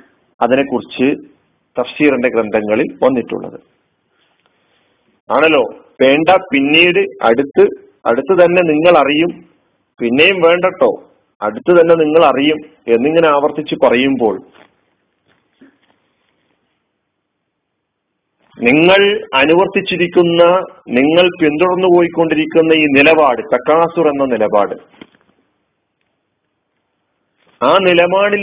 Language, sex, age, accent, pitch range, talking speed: Malayalam, male, 50-69, native, 150-185 Hz, 70 wpm